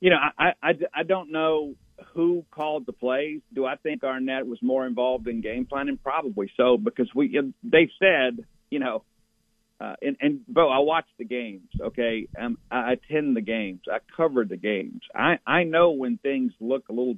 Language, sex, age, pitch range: English, male, 50-69, 120-160 Hz